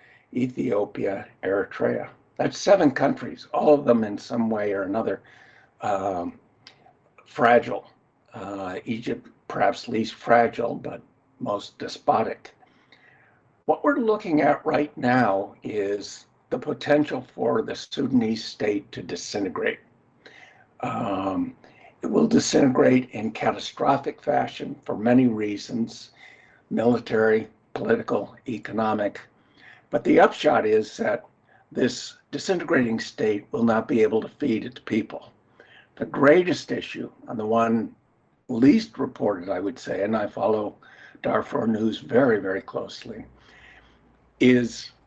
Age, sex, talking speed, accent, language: 60-79, male, 115 wpm, American, English